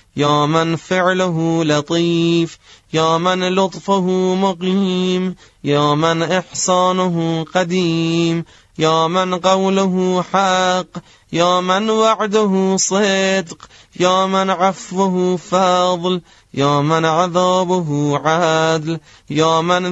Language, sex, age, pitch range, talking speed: Persian, male, 30-49, 160-185 Hz, 90 wpm